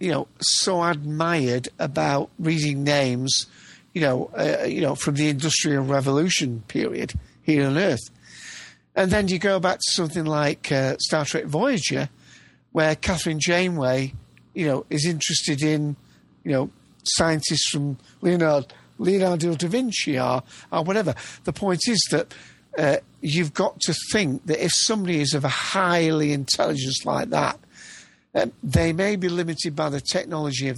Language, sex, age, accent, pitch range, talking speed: English, male, 50-69, British, 135-170 Hz, 155 wpm